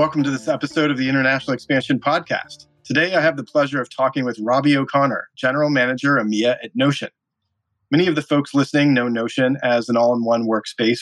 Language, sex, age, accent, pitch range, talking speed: English, male, 30-49, American, 115-140 Hz, 190 wpm